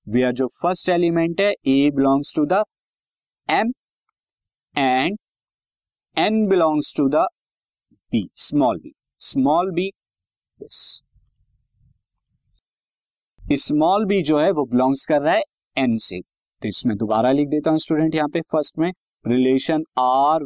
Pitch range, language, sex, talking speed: 130-175 Hz, Hindi, male, 130 wpm